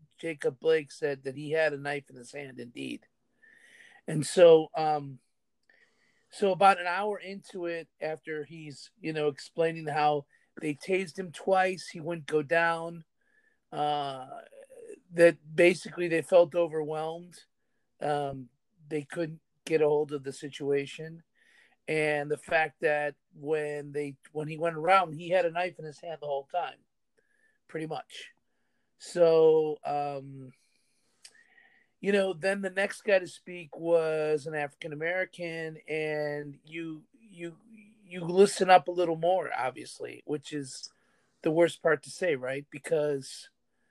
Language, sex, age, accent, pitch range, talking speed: English, male, 40-59, American, 150-190 Hz, 140 wpm